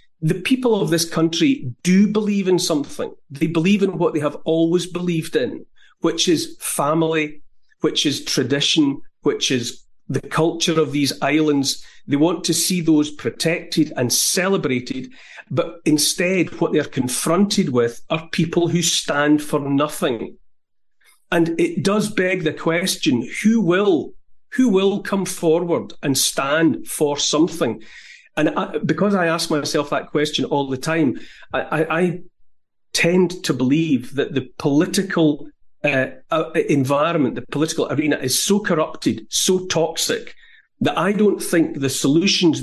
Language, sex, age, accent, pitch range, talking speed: English, male, 40-59, British, 145-180 Hz, 140 wpm